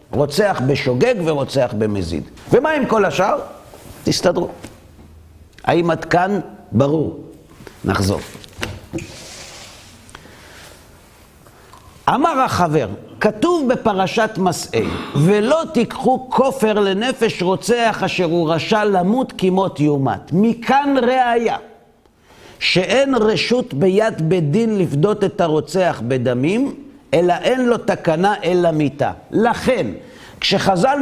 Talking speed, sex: 95 wpm, male